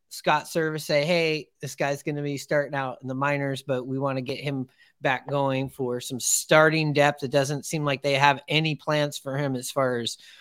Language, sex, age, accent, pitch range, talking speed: English, male, 30-49, American, 145-180 Hz, 225 wpm